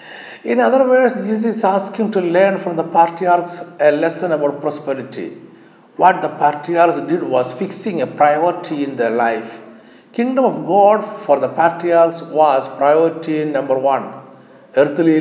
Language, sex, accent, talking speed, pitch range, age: English, male, Indian, 145 wpm, 135-185 Hz, 60-79